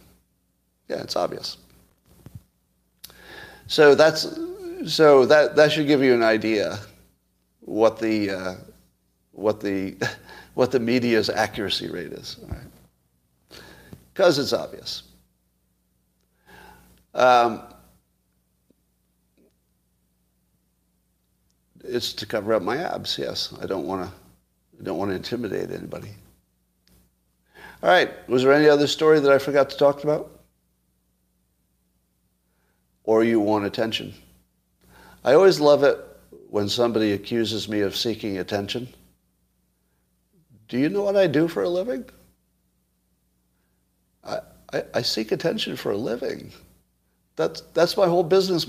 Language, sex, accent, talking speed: English, male, American, 120 wpm